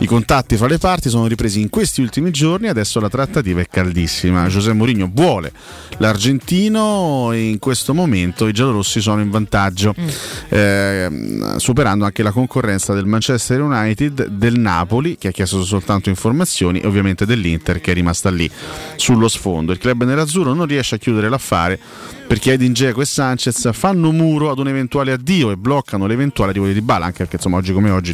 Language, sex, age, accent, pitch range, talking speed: Italian, male, 30-49, native, 100-135 Hz, 180 wpm